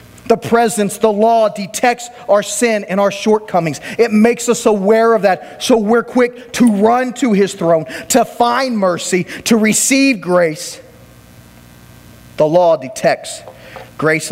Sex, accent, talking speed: male, American, 145 wpm